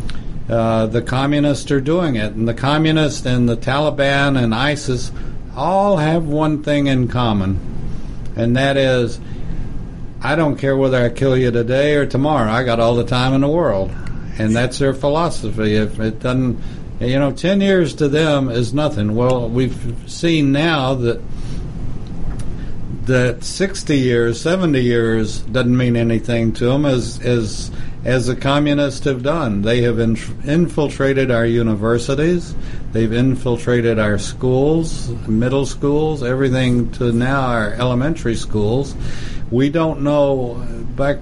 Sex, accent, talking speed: male, American, 145 wpm